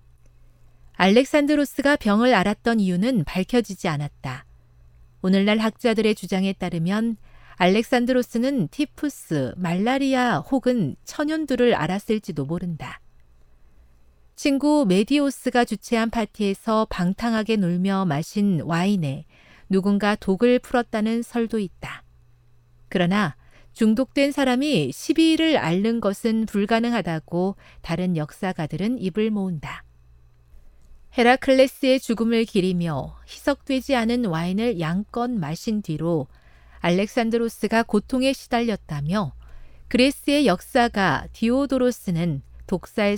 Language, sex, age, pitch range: Korean, female, 40-59, 155-240 Hz